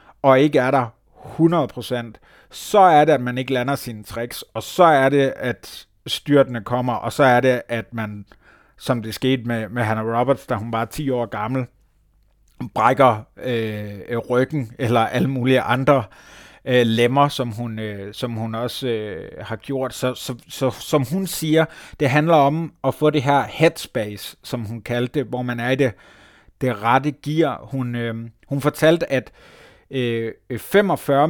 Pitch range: 115-145 Hz